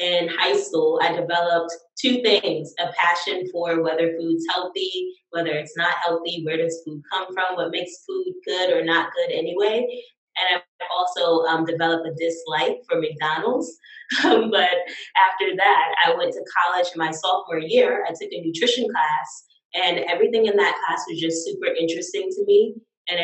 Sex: female